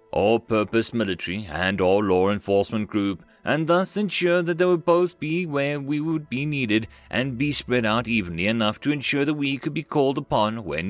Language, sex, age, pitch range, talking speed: English, male, 30-49, 105-150 Hz, 200 wpm